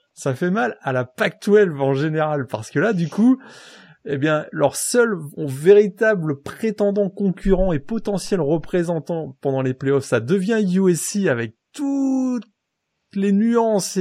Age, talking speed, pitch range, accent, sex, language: 30-49, 145 wpm, 135-195 Hz, French, male, French